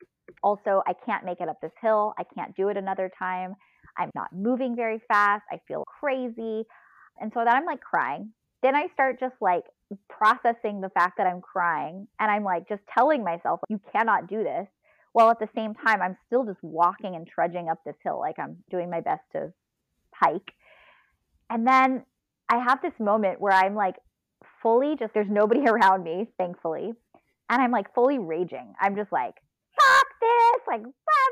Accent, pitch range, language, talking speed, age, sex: American, 190-250 Hz, English, 185 wpm, 20-39, female